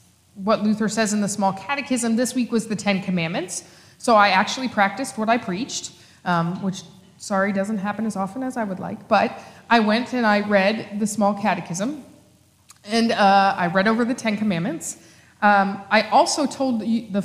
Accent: American